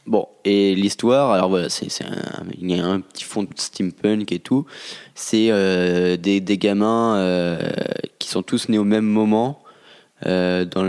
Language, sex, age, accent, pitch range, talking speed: French, male, 20-39, French, 90-110 Hz, 180 wpm